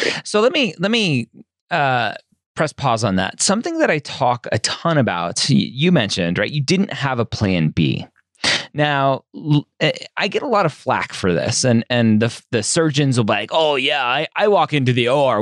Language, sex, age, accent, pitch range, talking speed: English, male, 30-49, American, 100-145 Hz, 200 wpm